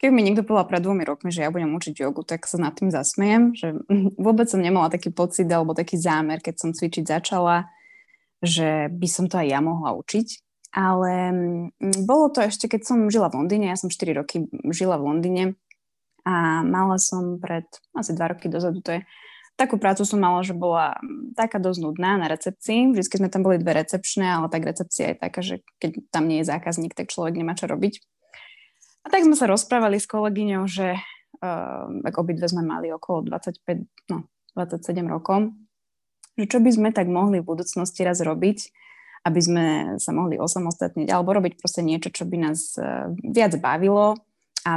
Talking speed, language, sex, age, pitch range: 185 wpm, Slovak, female, 20-39, 165-205 Hz